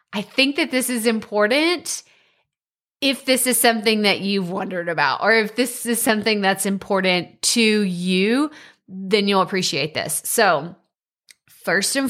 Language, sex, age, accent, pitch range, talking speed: English, female, 20-39, American, 200-285 Hz, 150 wpm